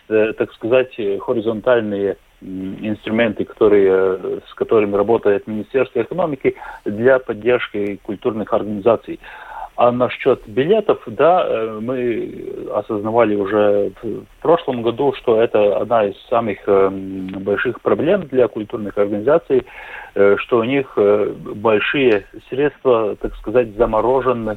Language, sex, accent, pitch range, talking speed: Russian, male, native, 100-125 Hz, 110 wpm